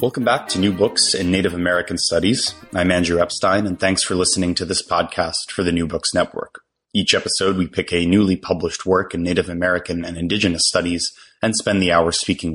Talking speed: 205 wpm